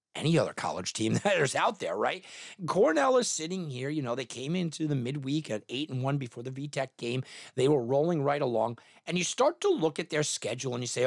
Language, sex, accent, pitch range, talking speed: English, male, American, 140-215 Hz, 240 wpm